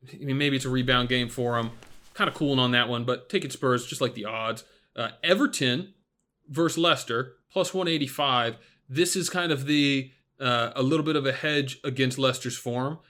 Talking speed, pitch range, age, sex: 200 wpm, 125-145 Hz, 30-49, male